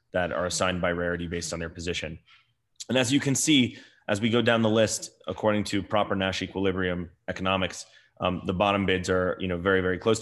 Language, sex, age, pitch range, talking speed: English, male, 20-39, 90-100 Hz, 200 wpm